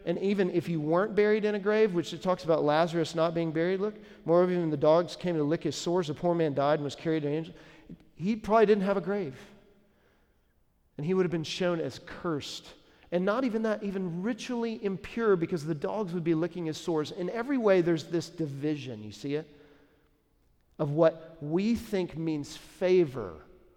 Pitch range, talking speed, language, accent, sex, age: 145-195 Hz, 205 wpm, English, American, male, 40-59